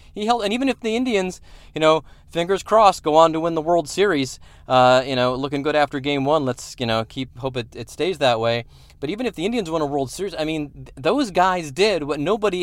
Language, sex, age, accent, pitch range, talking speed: English, male, 30-49, American, 130-210 Hz, 250 wpm